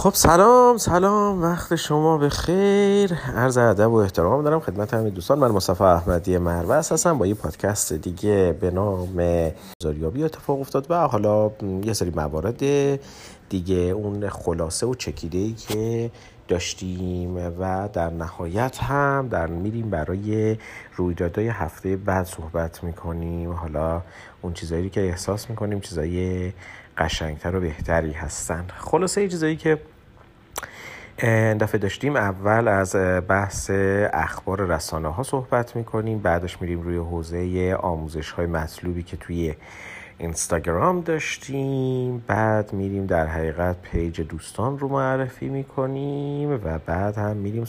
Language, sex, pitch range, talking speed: Persian, male, 85-120 Hz, 130 wpm